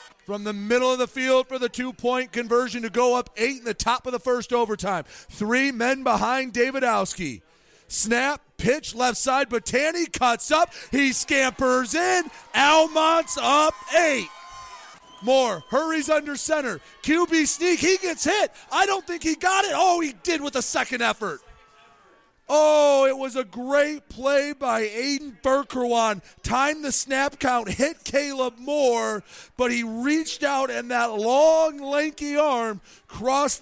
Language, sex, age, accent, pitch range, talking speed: English, male, 30-49, American, 235-290 Hz, 155 wpm